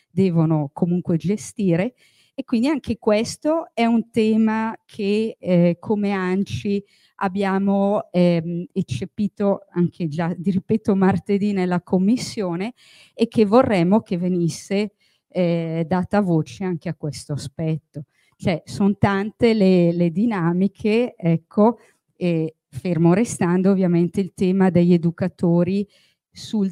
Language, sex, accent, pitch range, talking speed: Italian, female, native, 170-200 Hz, 115 wpm